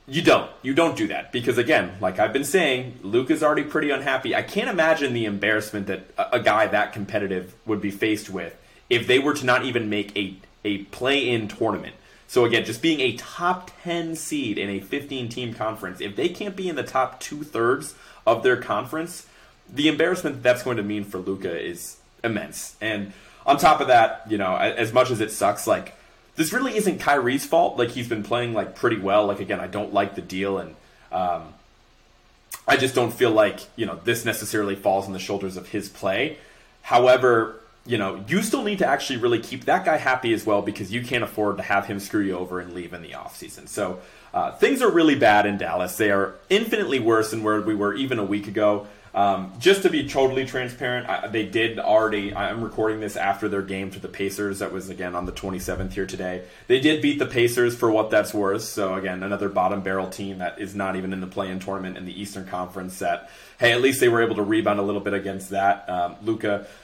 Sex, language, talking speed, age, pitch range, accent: male, English, 220 wpm, 30-49, 100-125 Hz, American